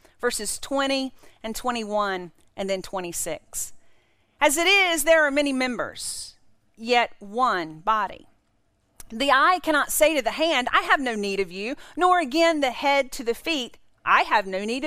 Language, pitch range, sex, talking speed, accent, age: English, 205-315 Hz, female, 165 wpm, American, 40-59